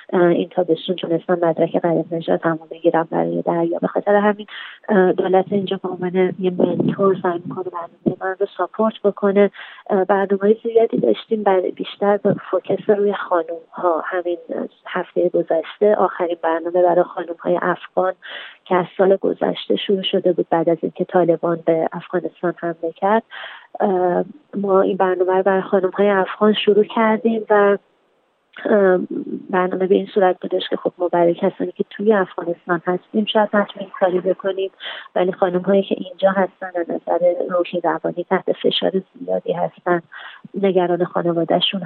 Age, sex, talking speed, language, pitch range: 30-49, female, 145 wpm, Persian, 175-205 Hz